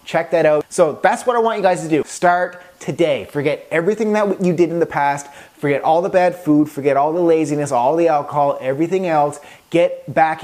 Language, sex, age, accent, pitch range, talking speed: English, male, 20-39, American, 140-170 Hz, 220 wpm